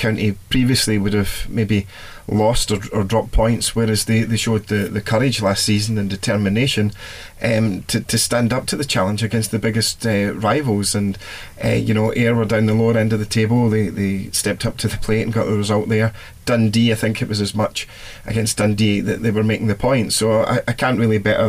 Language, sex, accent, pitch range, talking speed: English, male, British, 100-115 Hz, 225 wpm